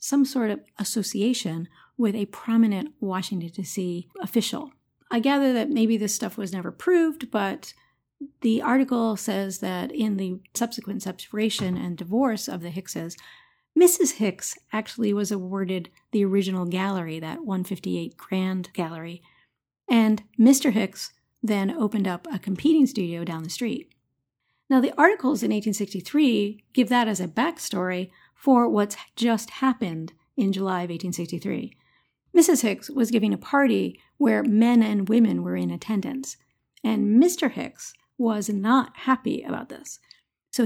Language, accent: English, American